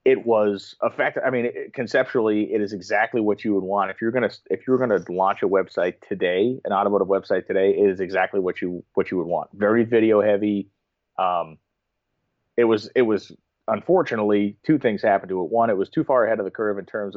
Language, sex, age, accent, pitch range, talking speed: English, male, 30-49, American, 95-110 Hz, 220 wpm